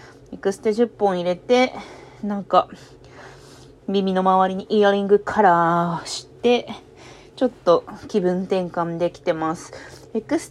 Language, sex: Japanese, female